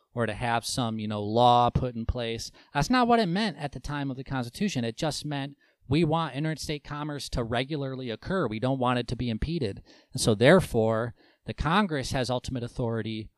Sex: male